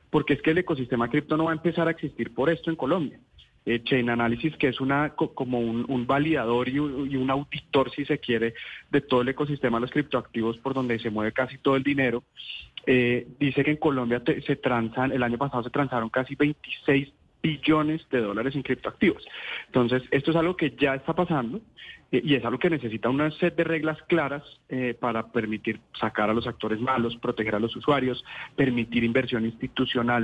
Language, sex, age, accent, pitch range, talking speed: Spanish, male, 30-49, Colombian, 120-145 Hz, 200 wpm